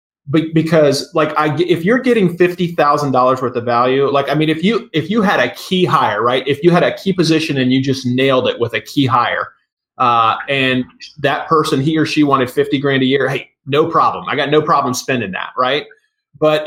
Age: 30-49